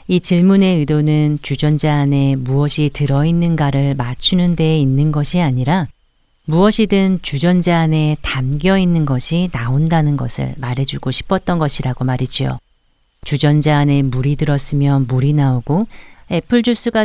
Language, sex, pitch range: Korean, female, 135-170 Hz